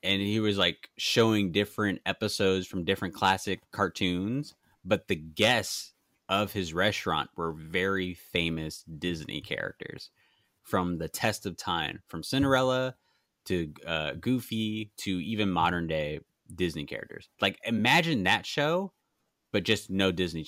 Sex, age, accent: male, 20-39, American